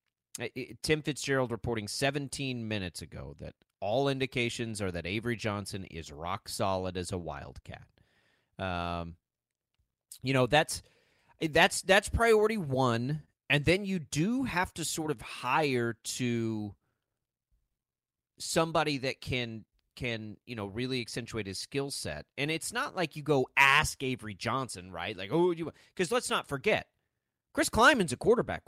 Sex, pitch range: male, 105-150 Hz